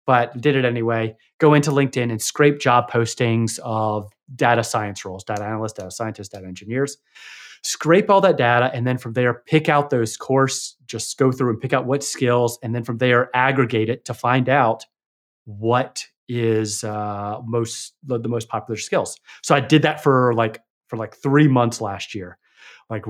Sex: male